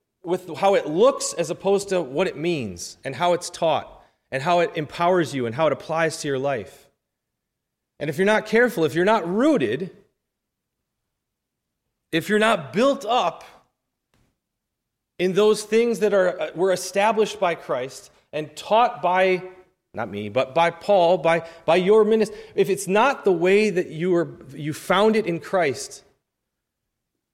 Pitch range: 155-190 Hz